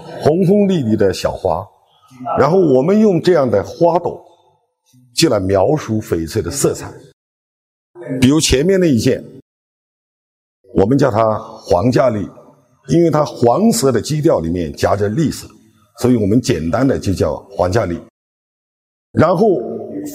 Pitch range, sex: 105-180 Hz, male